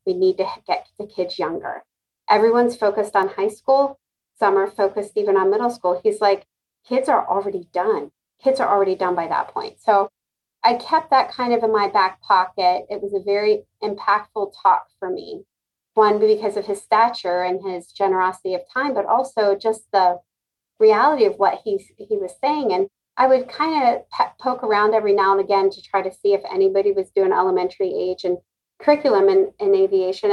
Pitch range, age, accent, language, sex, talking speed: 190-250 Hz, 30-49, American, English, female, 190 wpm